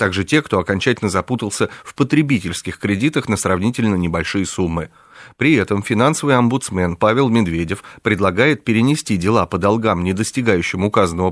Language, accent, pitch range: Russian, native, 95-125 Hz